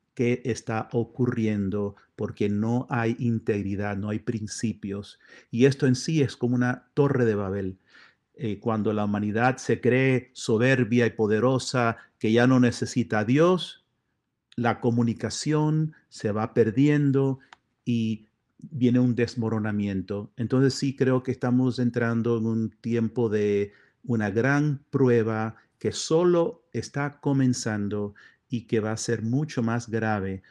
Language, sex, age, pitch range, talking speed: Spanish, male, 50-69, 110-135 Hz, 135 wpm